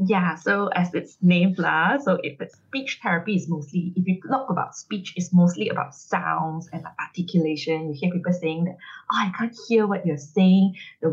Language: English